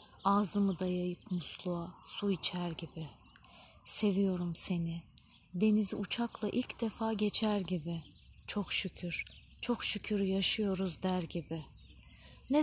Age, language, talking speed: 30-49, Turkish, 105 wpm